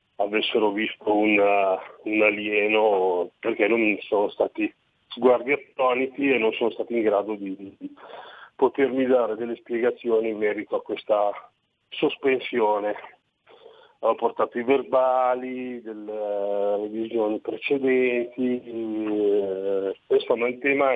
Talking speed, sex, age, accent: 120 wpm, male, 40-59, native